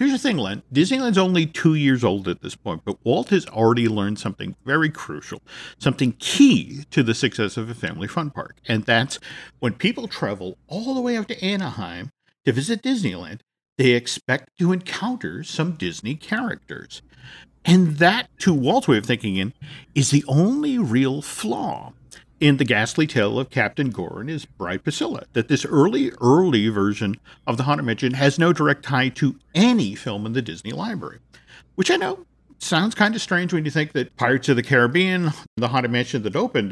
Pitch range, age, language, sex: 115-170 Hz, 50-69, English, male